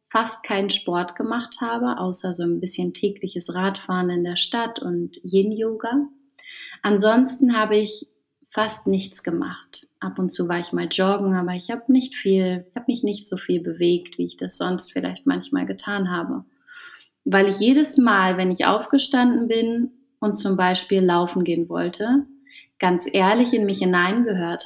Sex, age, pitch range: female, 30-49, 180-240 Hz